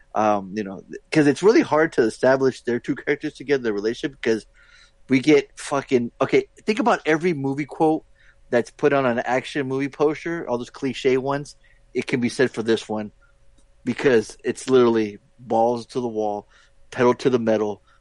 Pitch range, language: 115-155 Hz, English